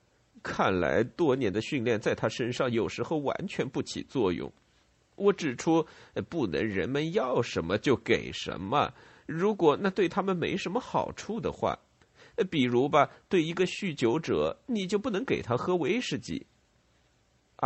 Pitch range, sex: 125-195 Hz, male